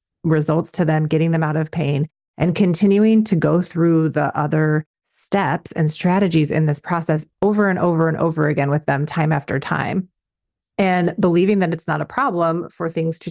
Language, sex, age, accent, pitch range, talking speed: English, female, 30-49, American, 155-190 Hz, 190 wpm